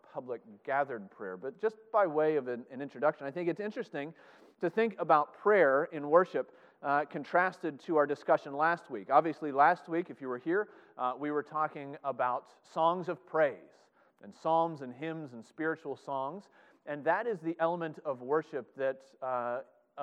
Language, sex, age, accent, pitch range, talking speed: English, male, 30-49, American, 135-165 Hz, 175 wpm